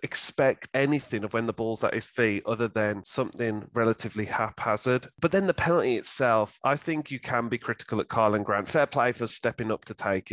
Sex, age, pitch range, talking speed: male, 30-49, 105-125 Hz, 205 wpm